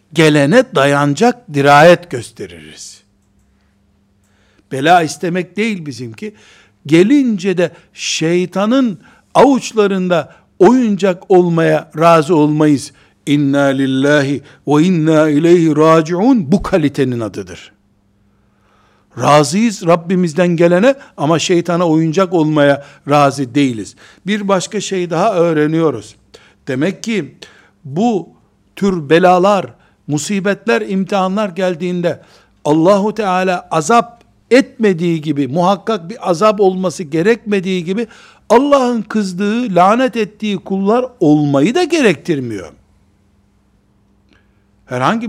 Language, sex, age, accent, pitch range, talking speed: Turkish, male, 60-79, native, 135-195 Hz, 90 wpm